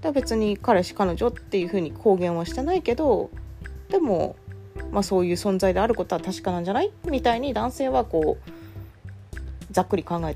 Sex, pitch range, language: female, 150-215 Hz, Japanese